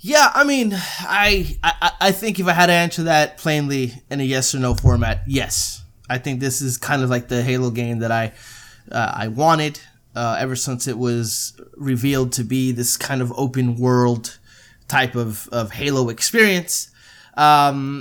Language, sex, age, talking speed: English, male, 20-39, 180 wpm